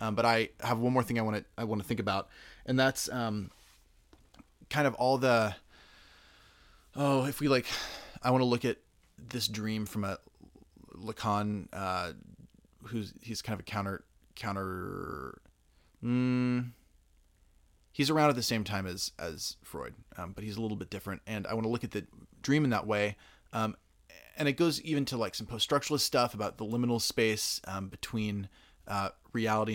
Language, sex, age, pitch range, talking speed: English, male, 20-39, 100-125 Hz, 180 wpm